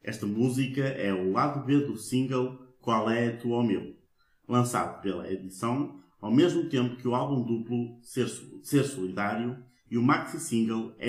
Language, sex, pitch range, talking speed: Portuguese, male, 110-135 Hz, 150 wpm